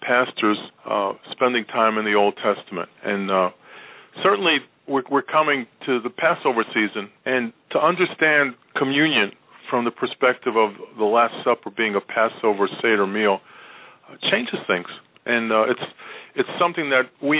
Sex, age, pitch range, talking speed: male, 40-59, 110-135 Hz, 150 wpm